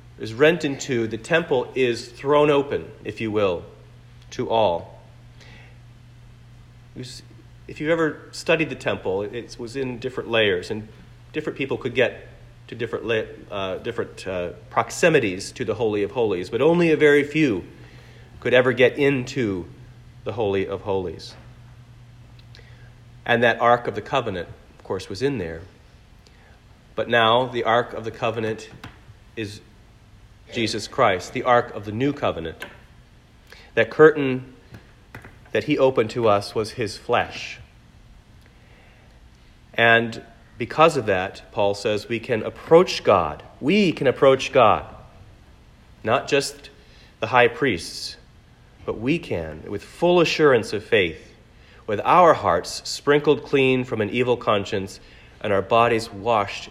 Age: 40-59